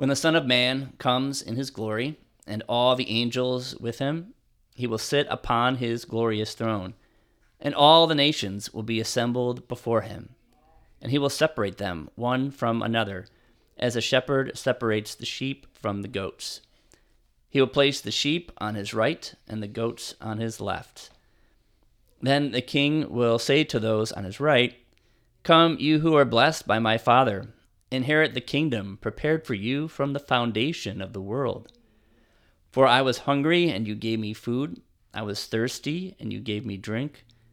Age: 40-59